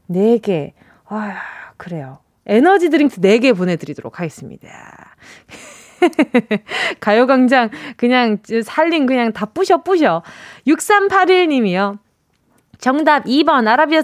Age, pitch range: 20-39, 220-330 Hz